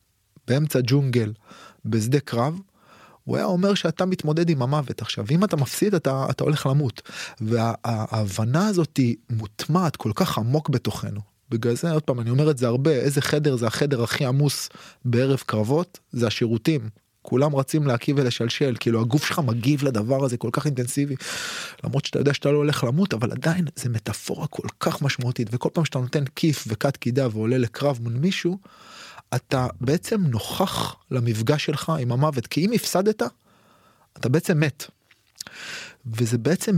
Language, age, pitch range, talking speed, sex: Hebrew, 20-39, 115-150 Hz, 150 wpm, male